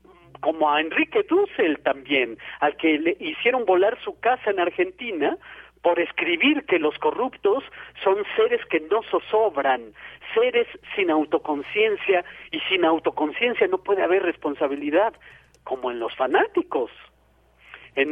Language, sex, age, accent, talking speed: Spanish, male, 50-69, Mexican, 130 wpm